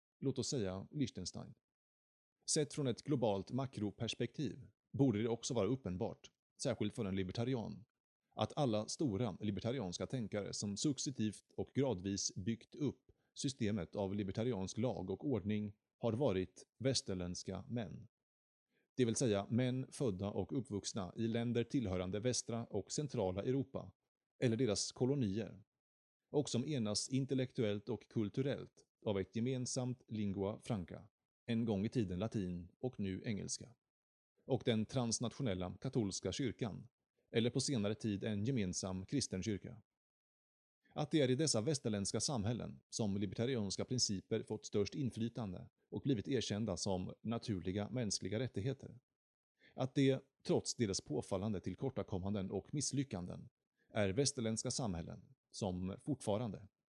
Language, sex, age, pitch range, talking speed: Swedish, male, 30-49, 100-130 Hz, 130 wpm